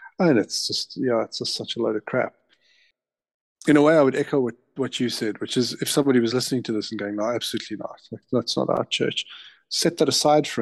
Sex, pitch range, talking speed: male, 110-130 Hz, 250 wpm